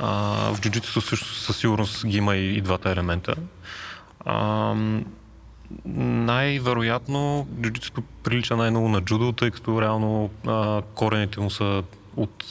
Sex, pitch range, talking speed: male, 100-115 Hz, 125 wpm